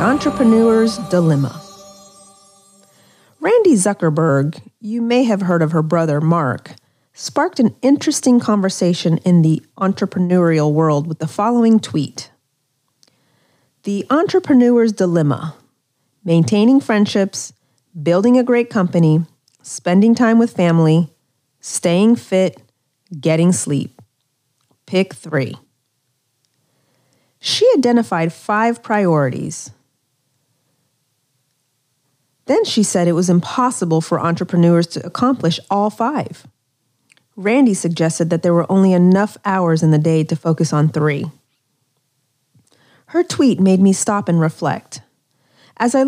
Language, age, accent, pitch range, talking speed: English, 40-59, American, 145-200 Hz, 110 wpm